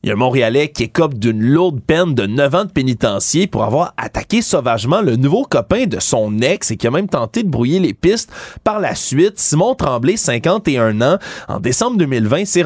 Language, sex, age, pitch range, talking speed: French, male, 30-49, 125-175 Hz, 215 wpm